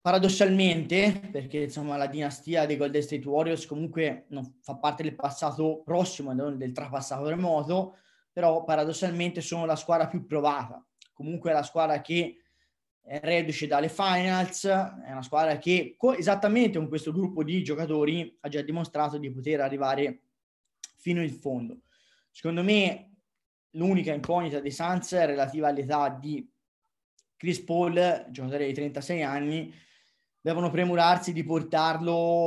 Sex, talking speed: male, 140 wpm